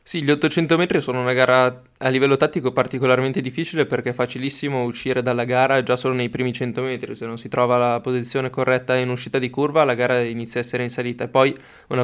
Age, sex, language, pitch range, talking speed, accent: 20-39, male, Italian, 120-135 Hz, 225 wpm, native